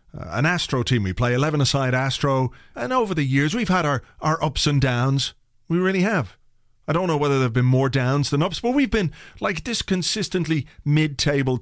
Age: 40-59